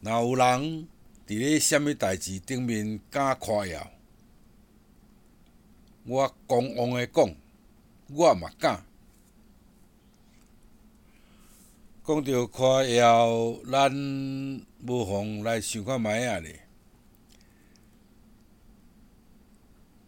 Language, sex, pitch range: Chinese, male, 105-130 Hz